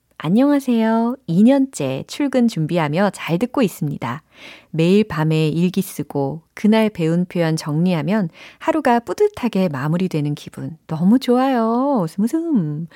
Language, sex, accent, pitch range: Korean, female, native, 150-215 Hz